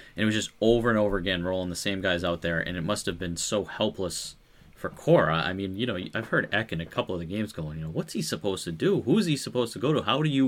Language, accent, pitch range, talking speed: English, American, 85-110 Hz, 310 wpm